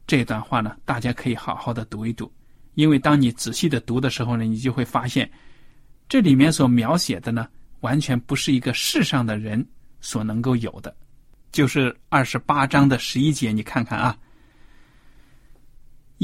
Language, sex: Chinese, male